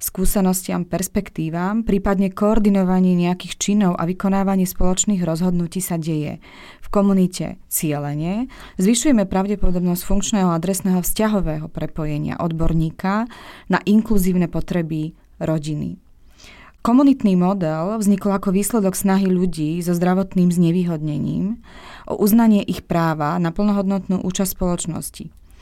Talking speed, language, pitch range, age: 105 wpm, Slovak, 175-205 Hz, 30-49